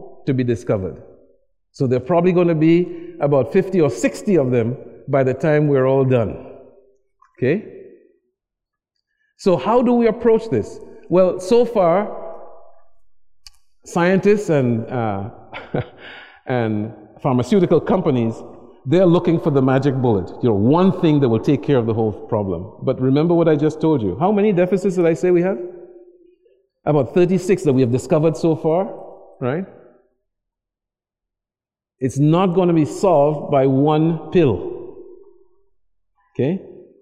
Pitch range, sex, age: 135-205 Hz, male, 50-69